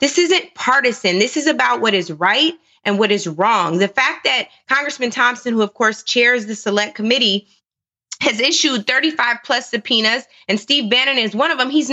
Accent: American